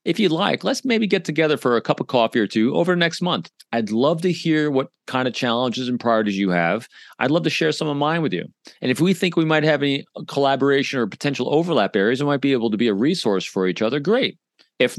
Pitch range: 110-145 Hz